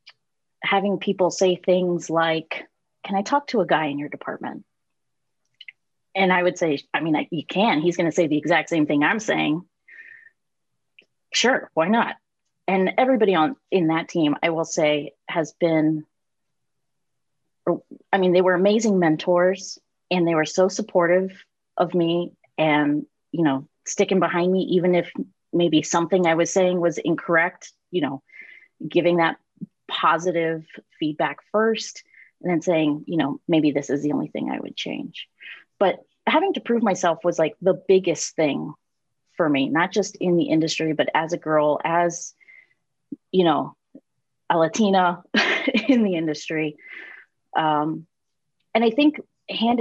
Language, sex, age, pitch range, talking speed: English, female, 30-49, 160-195 Hz, 155 wpm